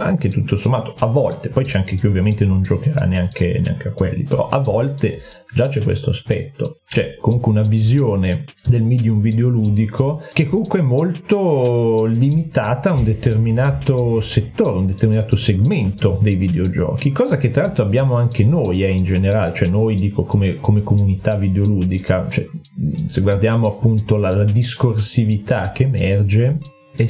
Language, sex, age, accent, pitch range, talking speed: Italian, male, 30-49, native, 105-135 Hz, 155 wpm